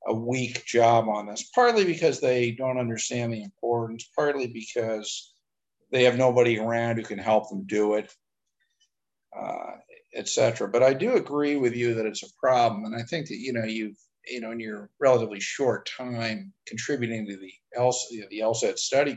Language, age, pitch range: English, 50-69, 110-155 Hz